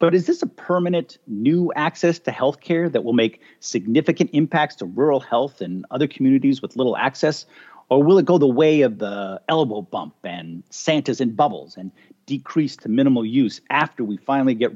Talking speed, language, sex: 185 wpm, English, male